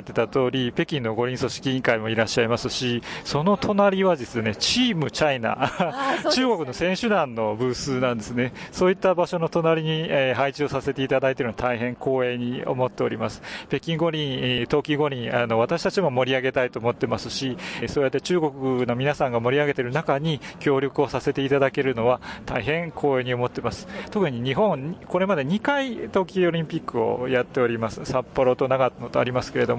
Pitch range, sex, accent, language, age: 120-155 Hz, male, native, Japanese, 40-59